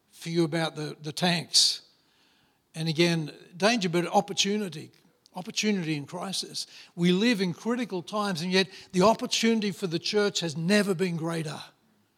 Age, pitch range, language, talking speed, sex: 60-79, 160-205 Hz, English, 150 wpm, male